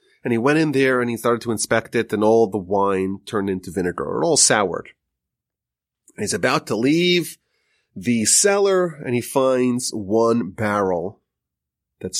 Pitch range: 95-150 Hz